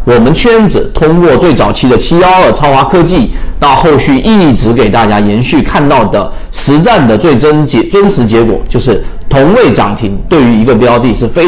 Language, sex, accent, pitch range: Chinese, male, native, 115-180 Hz